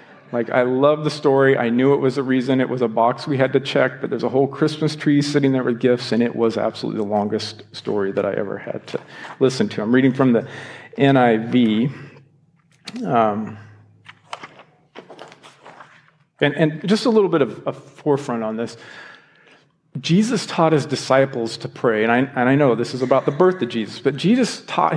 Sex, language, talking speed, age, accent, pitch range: male, English, 195 wpm, 50-69, American, 120-155 Hz